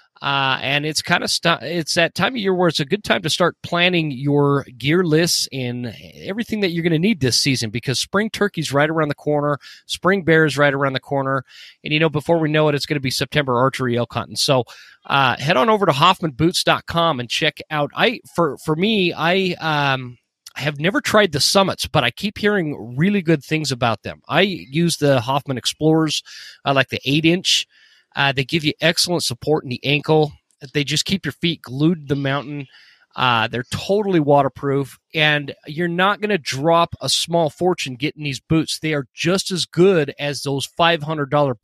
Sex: male